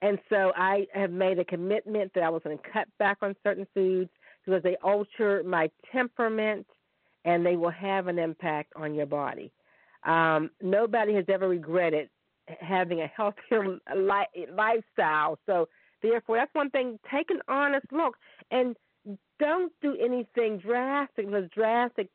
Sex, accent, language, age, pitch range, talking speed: female, American, English, 50-69, 185-225 Hz, 155 wpm